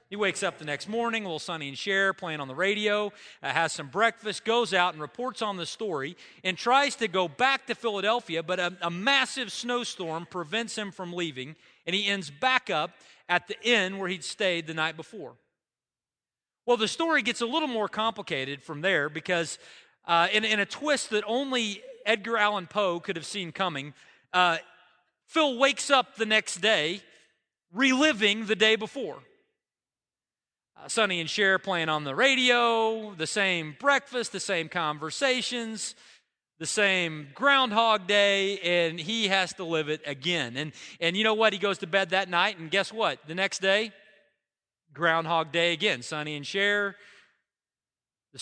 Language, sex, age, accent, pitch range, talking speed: English, male, 40-59, American, 170-225 Hz, 175 wpm